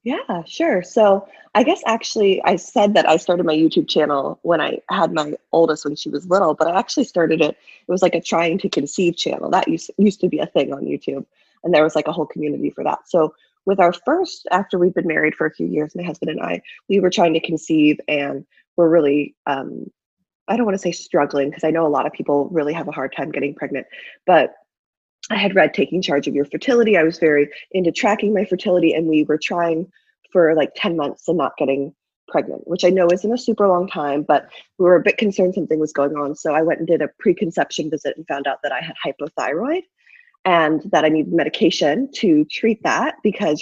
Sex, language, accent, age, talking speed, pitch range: female, English, American, 20-39, 230 wpm, 155-200 Hz